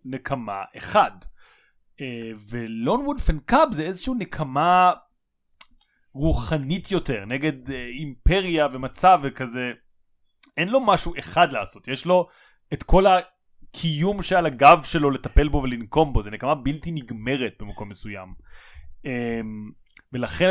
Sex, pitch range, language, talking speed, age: male, 130-175 Hz, Hebrew, 110 wpm, 30-49